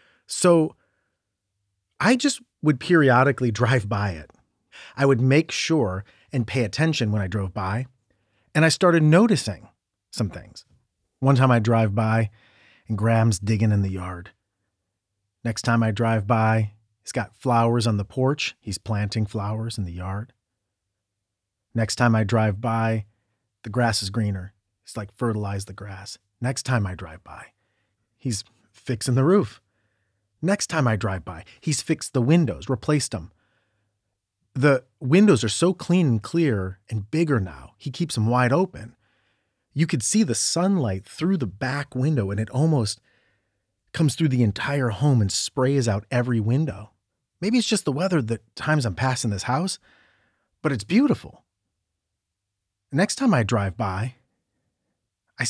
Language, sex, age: English, male, 40-59